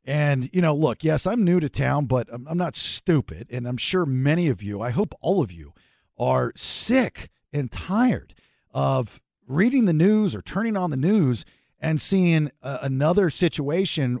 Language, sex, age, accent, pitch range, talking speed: English, male, 50-69, American, 130-190 Hz, 175 wpm